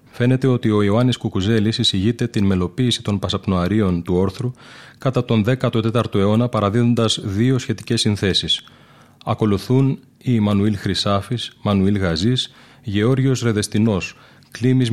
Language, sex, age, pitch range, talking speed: Greek, male, 30-49, 100-125 Hz, 120 wpm